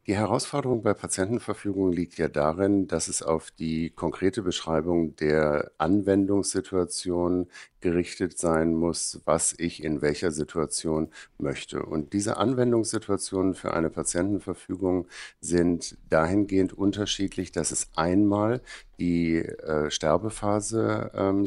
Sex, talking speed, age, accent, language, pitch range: male, 110 wpm, 60-79, German, German, 85-100 Hz